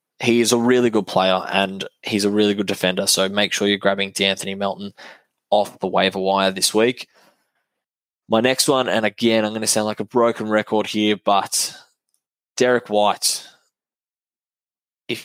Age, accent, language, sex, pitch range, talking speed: 10-29, Australian, English, male, 100-115 Hz, 170 wpm